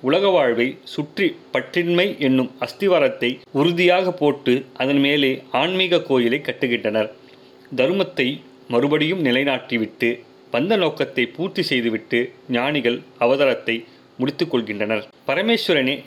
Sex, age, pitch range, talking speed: male, 30-49, 115-145 Hz, 90 wpm